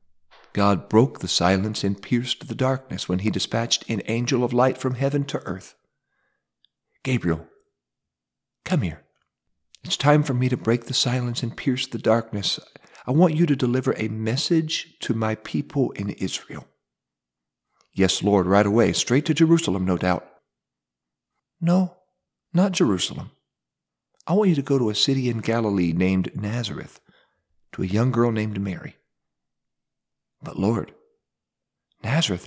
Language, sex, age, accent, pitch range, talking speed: English, male, 40-59, American, 95-140 Hz, 145 wpm